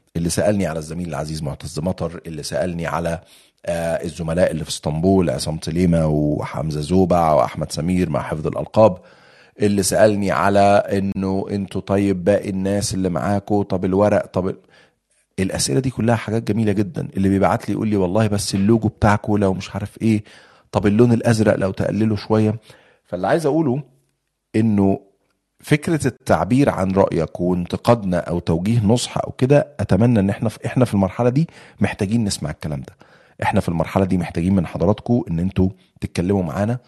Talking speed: 155 wpm